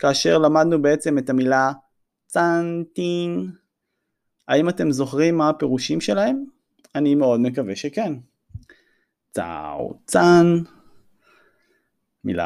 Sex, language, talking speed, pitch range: male, Hebrew, 90 wpm, 115-175 Hz